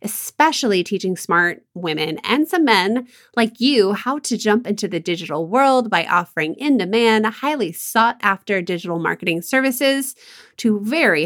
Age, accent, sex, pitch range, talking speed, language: 20-39, American, female, 180-255 Hz, 140 wpm, English